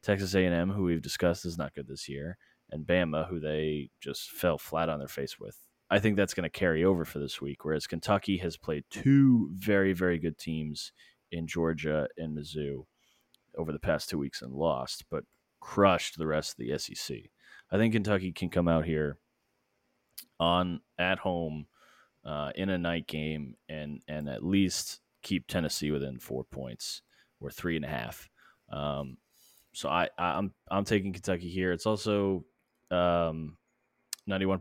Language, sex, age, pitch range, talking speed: English, male, 30-49, 75-90 Hz, 170 wpm